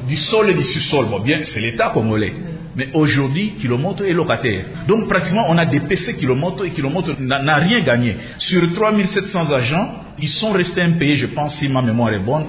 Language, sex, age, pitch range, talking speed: French, male, 50-69, 135-185 Hz, 205 wpm